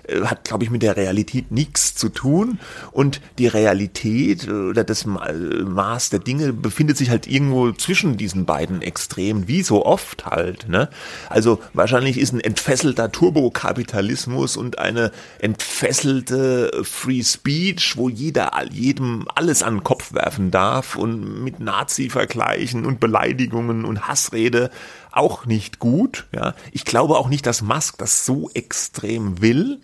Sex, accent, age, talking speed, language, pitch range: male, German, 30-49, 140 wpm, German, 100-130 Hz